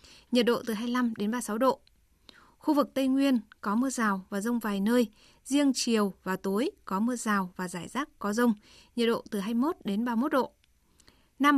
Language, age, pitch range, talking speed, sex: Vietnamese, 20-39, 205-250 Hz, 195 wpm, female